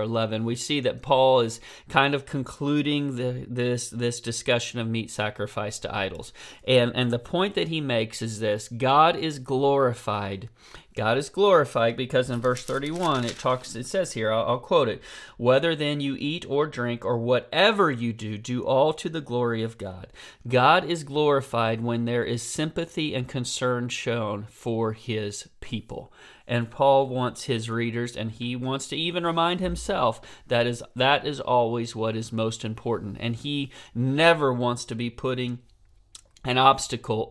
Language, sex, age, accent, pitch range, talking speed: English, male, 40-59, American, 115-145 Hz, 170 wpm